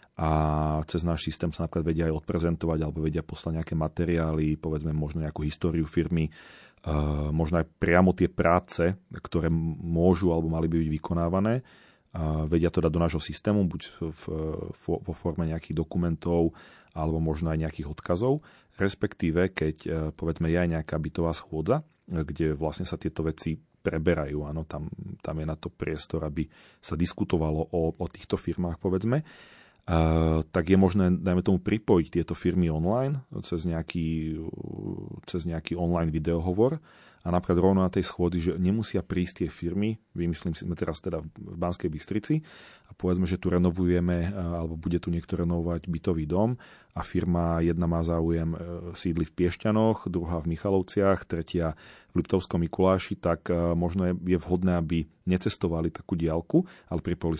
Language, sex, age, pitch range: Slovak, male, 30-49, 80-90 Hz